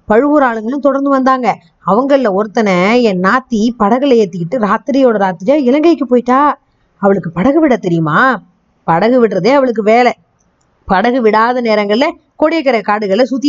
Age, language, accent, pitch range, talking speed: 20-39, Tamil, native, 205-270 Hz, 105 wpm